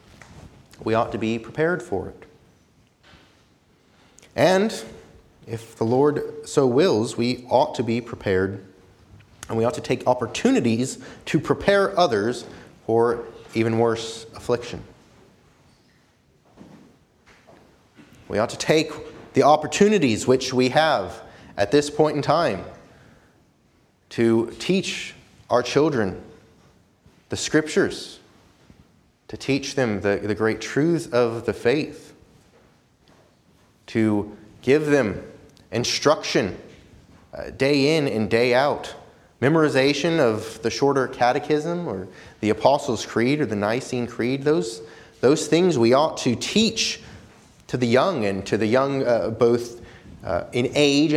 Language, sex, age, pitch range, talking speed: English, male, 30-49, 110-145 Hz, 120 wpm